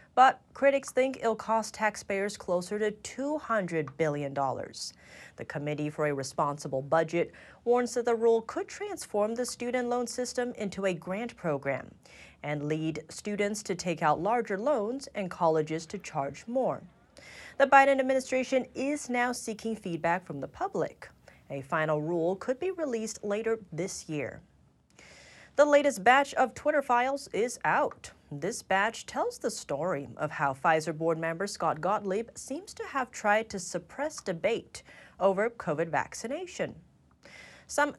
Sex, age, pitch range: female, 30-49, 165-250 Hz